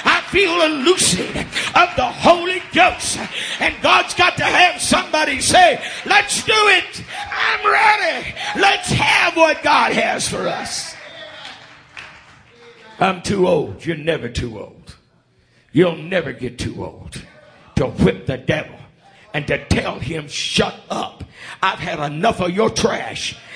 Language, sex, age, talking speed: English, male, 50-69, 140 wpm